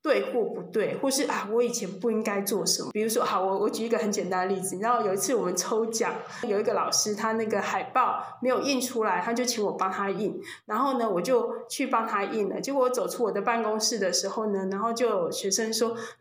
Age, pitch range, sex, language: 20-39, 220-295 Hz, female, Chinese